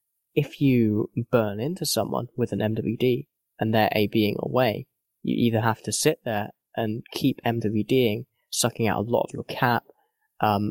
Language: English